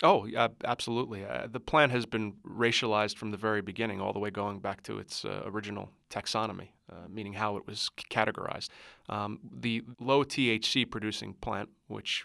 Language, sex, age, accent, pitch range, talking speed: English, male, 30-49, American, 105-115 Hz, 180 wpm